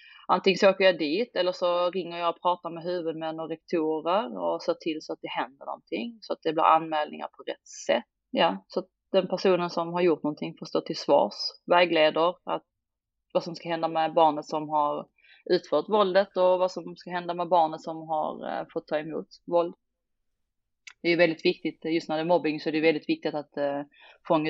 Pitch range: 145-175 Hz